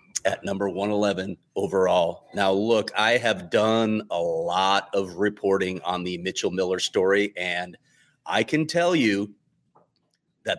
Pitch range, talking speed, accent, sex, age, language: 100-130 Hz, 135 wpm, American, male, 30-49, English